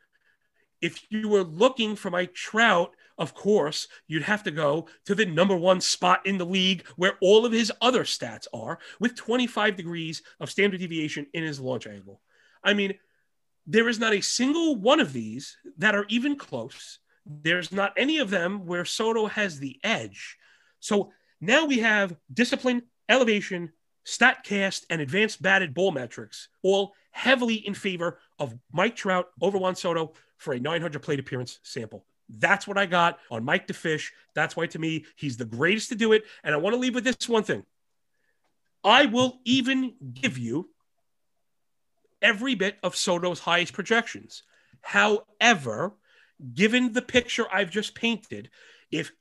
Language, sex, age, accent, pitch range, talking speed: English, male, 40-59, American, 170-230 Hz, 165 wpm